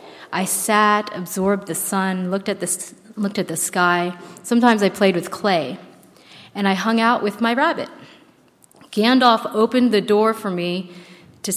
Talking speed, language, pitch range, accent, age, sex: 160 wpm, English, 185-225 Hz, American, 30-49, female